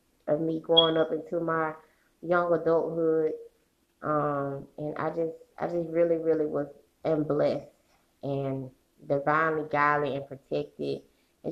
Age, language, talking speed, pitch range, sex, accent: 20-39, English, 130 wpm, 145-170 Hz, female, American